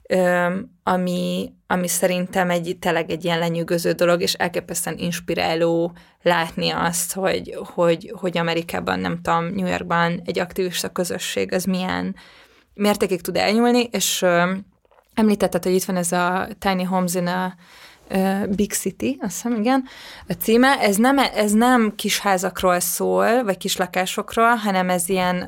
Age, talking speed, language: 20-39, 145 wpm, Hungarian